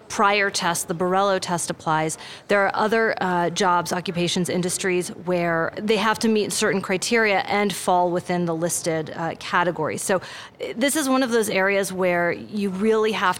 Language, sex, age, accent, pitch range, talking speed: English, female, 30-49, American, 175-215 Hz, 170 wpm